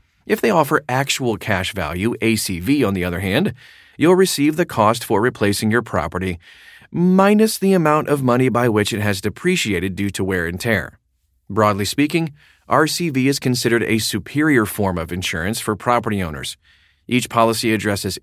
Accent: American